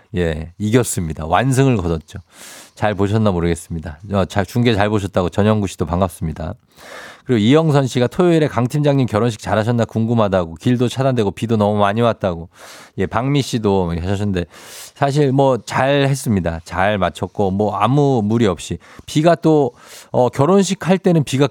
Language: Korean